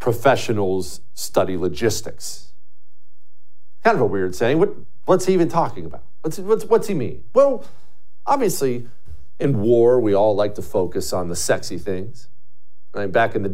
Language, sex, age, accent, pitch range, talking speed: English, male, 50-69, American, 95-150 Hz, 160 wpm